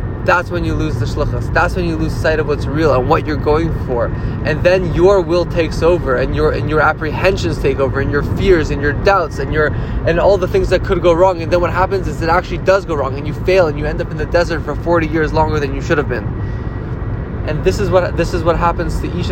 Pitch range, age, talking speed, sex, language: 120-180 Hz, 20-39, 270 wpm, male, English